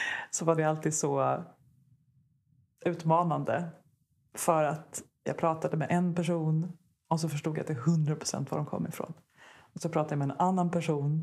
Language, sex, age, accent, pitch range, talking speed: Swedish, female, 30-49, native, 155-180 Hz, 170 wpm